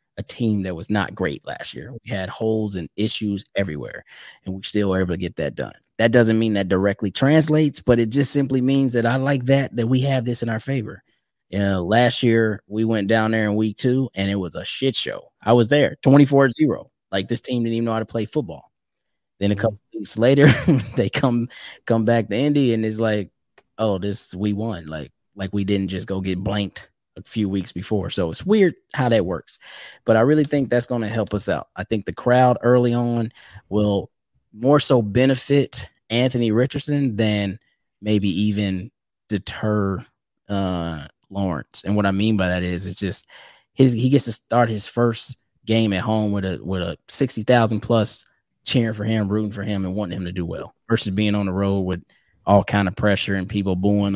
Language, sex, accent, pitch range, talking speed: English, male, American, 100-120 Hz, 210 wpm